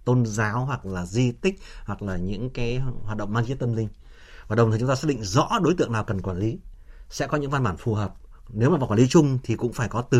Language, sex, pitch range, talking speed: Vietnamese, male, 105-140 Hz, 275 wpm